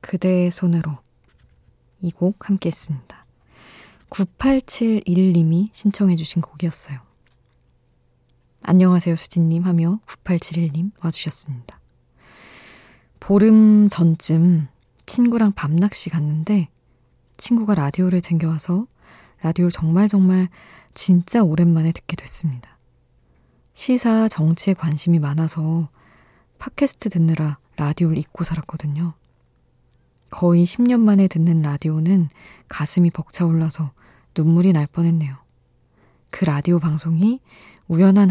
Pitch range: 150-185 Hz